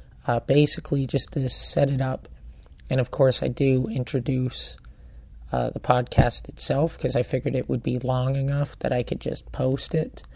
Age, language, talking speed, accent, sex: 30-49, English, 180 wpm, American, male